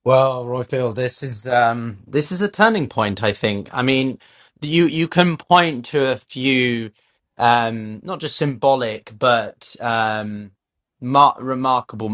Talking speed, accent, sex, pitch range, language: 150 wpm, British, male, 105-130 Hz, English